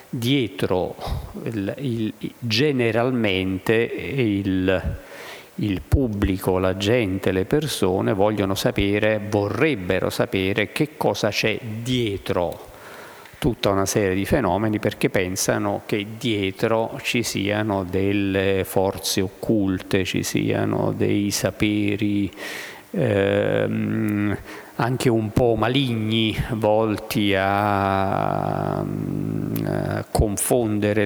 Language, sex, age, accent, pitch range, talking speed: Italian, male, 50-69, native, 100-115 Hz, 85 wpm